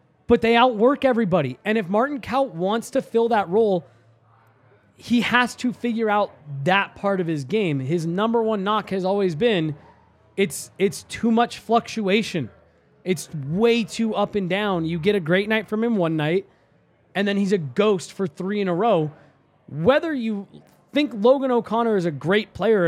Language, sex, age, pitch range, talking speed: English, male, 20-39, 160-215 Hz, 180 wpm